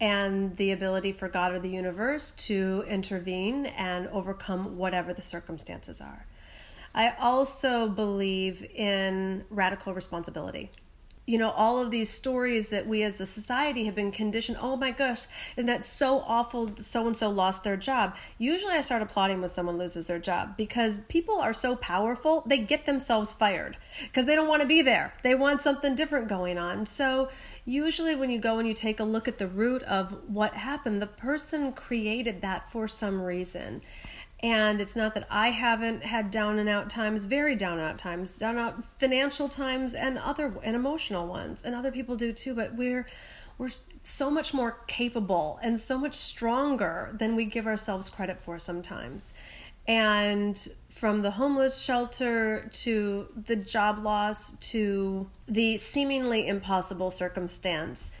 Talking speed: 170 wpm